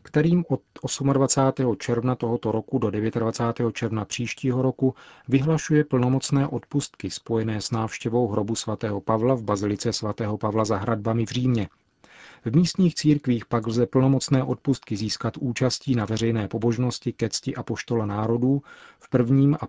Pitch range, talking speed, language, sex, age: 110-130 Hz, 145 wpm, Czech, male, 40-59